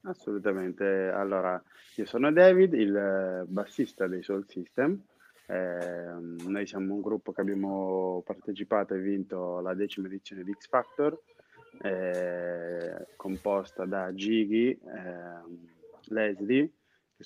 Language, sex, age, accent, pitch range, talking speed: Italian, male, 20-39, native, 95-110 Hz, 115 wpm